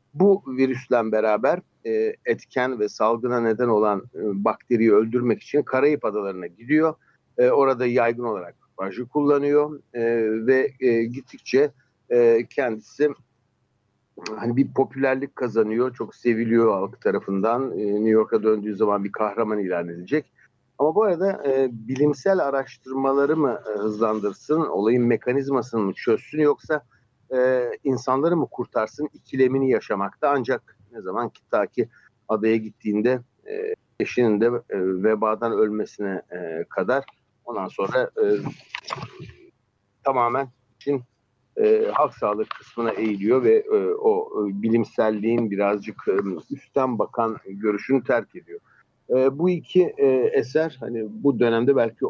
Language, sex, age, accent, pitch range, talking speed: Turkish, male, 60-79, native, 110-145 Hz, 115 wpm